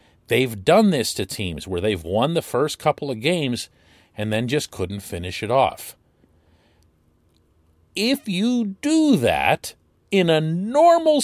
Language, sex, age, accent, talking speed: English, male, 40-59, American, 145 wpm